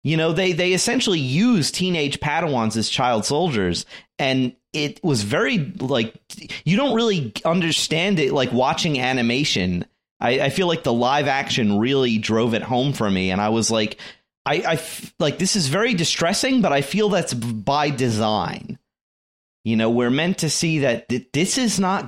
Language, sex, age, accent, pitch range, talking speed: English, male, 30-49, American, 110-150 Hz, 175 wpm